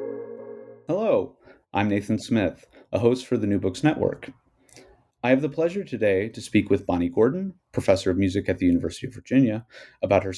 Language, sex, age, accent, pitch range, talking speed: English, male, 30-49, American, 95-145 Hz, 180 wpm